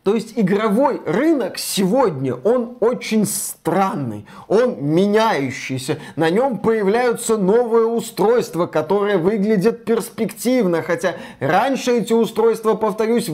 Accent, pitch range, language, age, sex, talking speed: native, 185-235 Hz, Russian, 20-39, male, 105 wpm